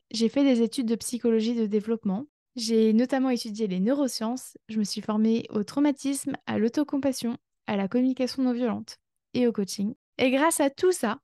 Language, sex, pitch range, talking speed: French, female, 215-265 Hz, 175 wpm